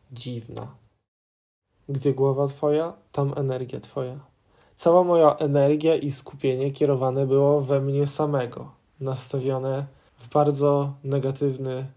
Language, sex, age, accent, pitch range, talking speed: Polish, male, 10-29, native, 125-145 Hz, 105 wpm